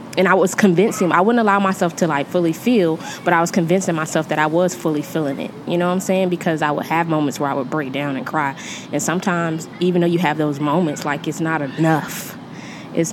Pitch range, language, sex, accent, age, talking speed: 155-190 Hz, English, female, American, 20-39, 240 wpm